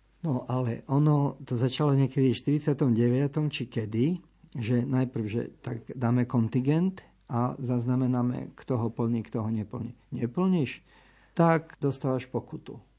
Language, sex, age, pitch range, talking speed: Slovak, male, 50-69, 120-140 Hz, 130 wpm